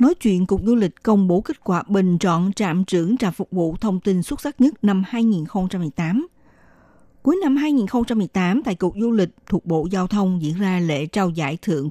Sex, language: female, Vietnamese